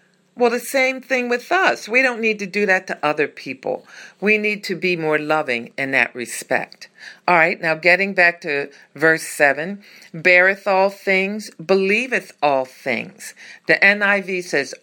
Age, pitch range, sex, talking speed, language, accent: 50-69, 160-210 Hz, female, 165 wpm, English, American